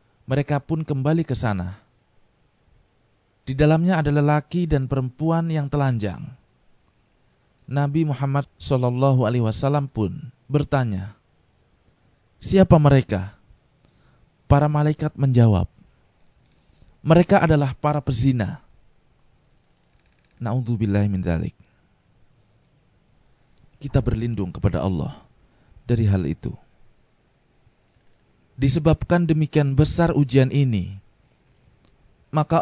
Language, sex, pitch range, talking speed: Indonesian, male, 115-150 Hz, 75 wpm